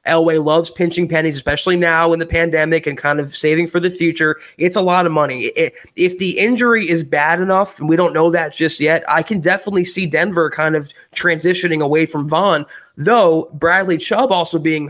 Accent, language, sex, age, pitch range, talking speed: American, English, male, 20-39, 155-190 Hz, 200 wpm